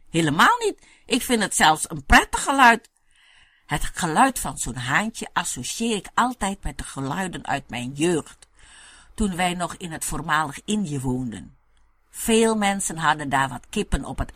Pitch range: 145-220 Hz